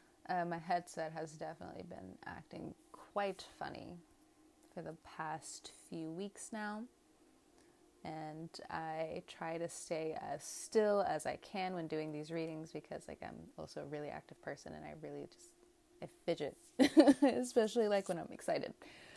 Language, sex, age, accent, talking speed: English, female, 20-39, American, 145 wpm